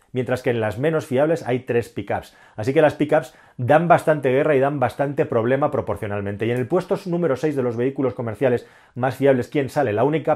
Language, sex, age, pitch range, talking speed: Spanish, male, 30-49, 125-155 Hz, 215 wpm